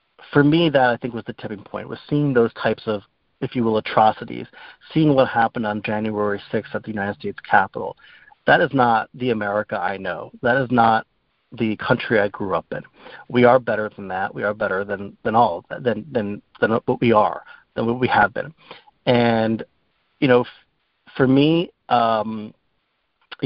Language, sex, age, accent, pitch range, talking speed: English, male, 30-49, American, 110-130 Hz, 190 wpm